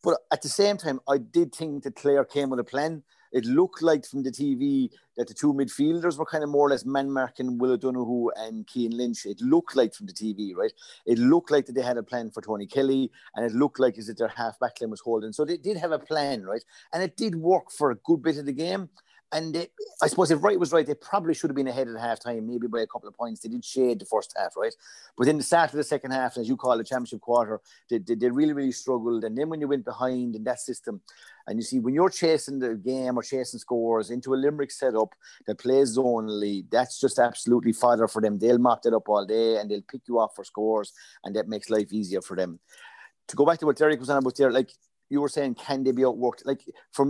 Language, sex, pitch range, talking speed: English, male, 115-150 Hz, 260 wpm